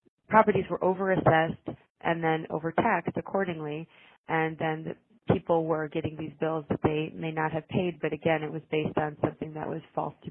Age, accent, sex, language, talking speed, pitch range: 30-49, American, female, English, 185 wpm, 160-175 Hz